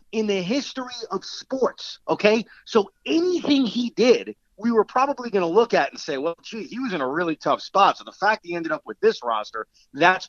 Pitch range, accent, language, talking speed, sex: 150-230 Hz, American, English, 220 wpm, male